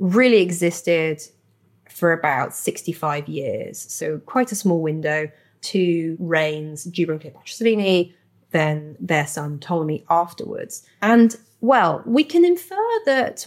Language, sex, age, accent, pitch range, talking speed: English, female, 30-49, British, 160-225 Hz, 115 wpm